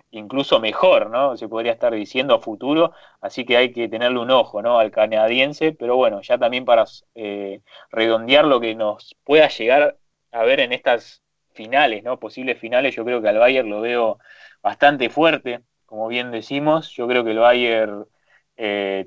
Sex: male